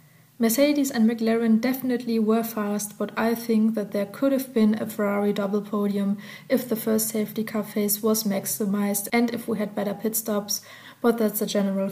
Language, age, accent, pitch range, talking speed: English, 20-39, German, 210-235 Hz, 185 wpm